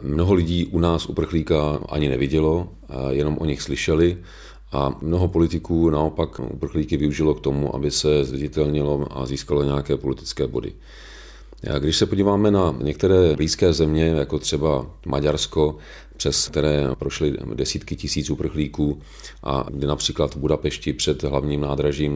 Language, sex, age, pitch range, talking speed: Czech, male, 40-59, 70-80 Hz, 140 wpm